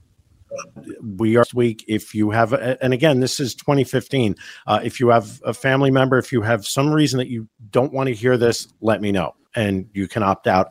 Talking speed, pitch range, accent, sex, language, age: 215 wpm, 105-130 Hz, American, male, English, 50-69